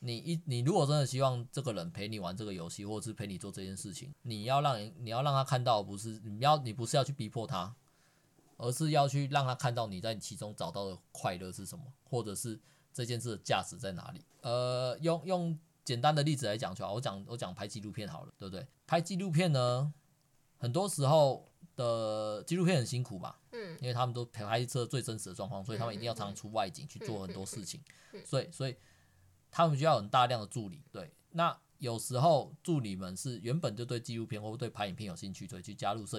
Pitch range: 110-150 Hz